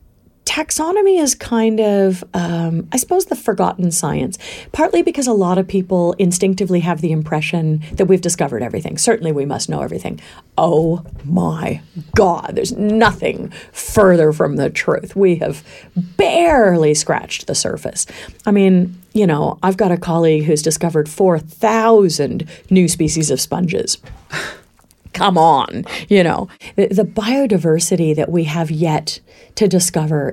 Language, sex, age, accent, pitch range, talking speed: English, female, 40-59, American, 165-200 Hz, 140 wpm